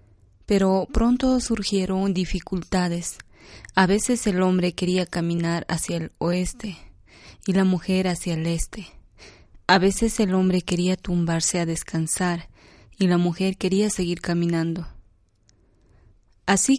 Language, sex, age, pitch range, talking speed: Spanish, female, 20-39, 165-195 Hz, 120 wpm